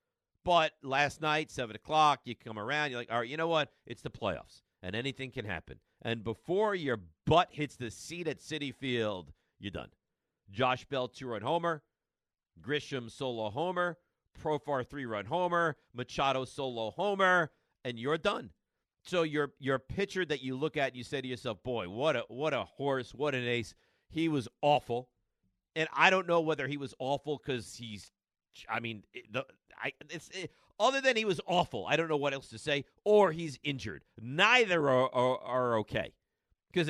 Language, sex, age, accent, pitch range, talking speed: English, male, 50-69, American, 120-165 Hz, 185 wpm